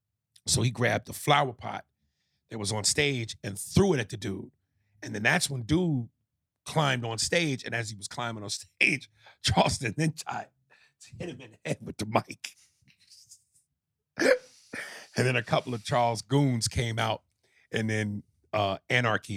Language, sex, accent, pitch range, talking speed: English, male, American, 105-135 Hz, 175 wpm